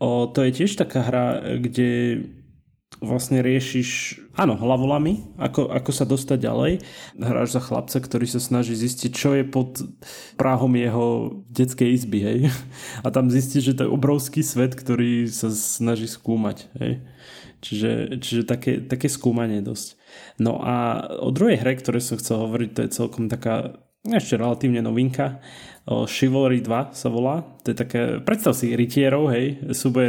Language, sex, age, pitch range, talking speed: Slovak, male, 20-39, 120-135 Hz, 155 wpm